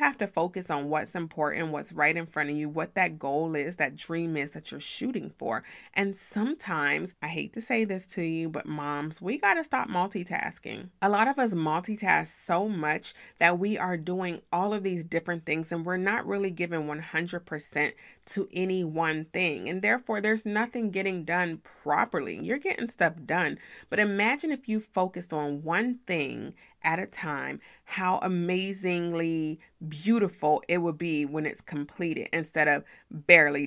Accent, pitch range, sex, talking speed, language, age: American, 155-195 Hz, female, 175 wpm, English, 30-49